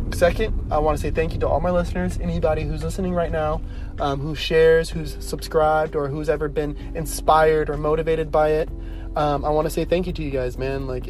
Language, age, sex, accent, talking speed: English, 20-39, male, American, 225 wpm